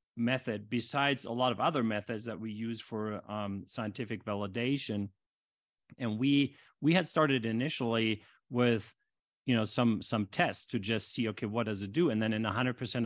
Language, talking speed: English, 175 wpm